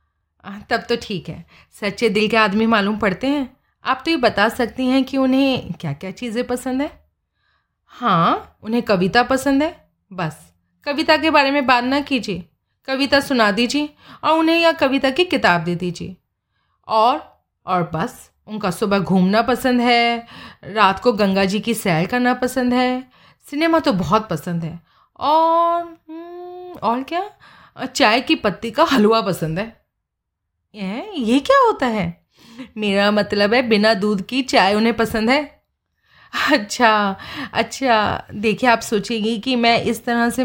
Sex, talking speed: female, 155 wpm